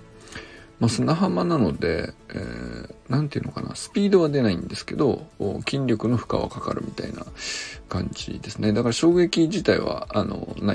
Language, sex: Japanese, male